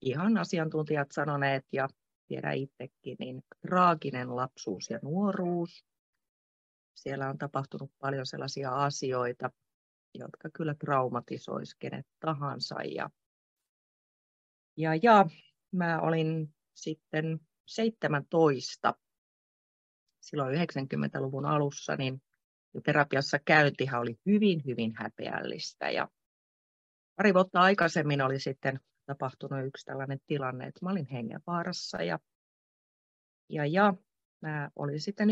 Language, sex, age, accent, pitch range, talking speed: Finnish, female, 30-49, native, 135-175 Hz, 100 wpm